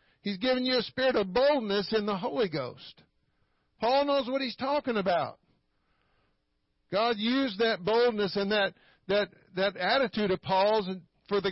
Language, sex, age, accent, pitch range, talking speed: English, male, 50-69, American, 185-250 Hz, 160 wpm